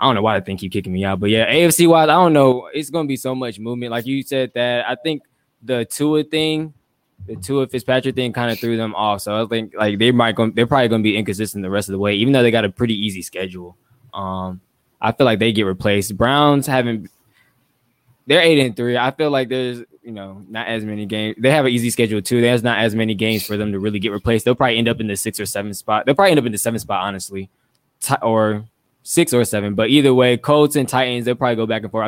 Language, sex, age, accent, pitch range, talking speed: English, male, 10-29, American, 105-130 Hz, 265 wpm